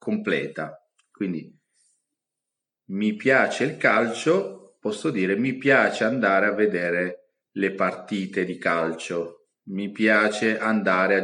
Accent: native